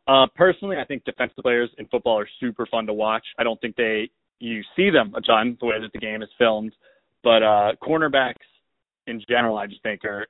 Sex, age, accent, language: male, 20-39, American, English